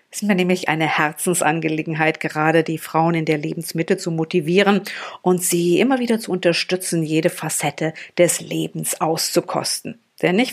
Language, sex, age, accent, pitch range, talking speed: German, female, 50-69, German, 165-195 Hz, 155 wpm